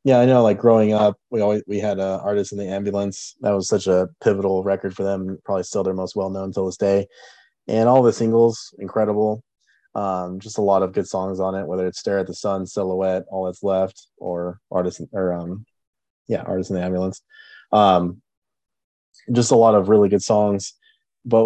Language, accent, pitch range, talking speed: English, American, 95-110 Hz, 205 wpm